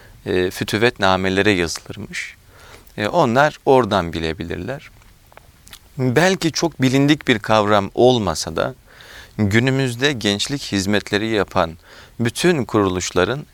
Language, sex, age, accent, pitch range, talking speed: Turkish, male, 40-59, native, 95-130 Hz, 95 wpm